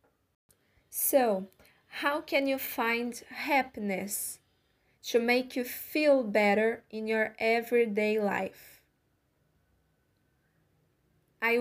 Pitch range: 210-245 Hz